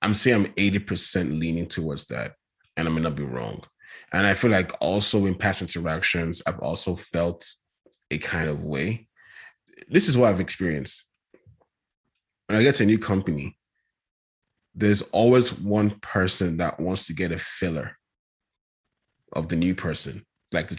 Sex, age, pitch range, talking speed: male, 20-39, 80-100 Hz, 160 wpm